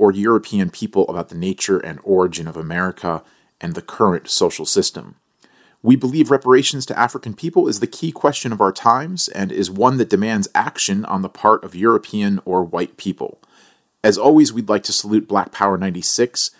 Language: English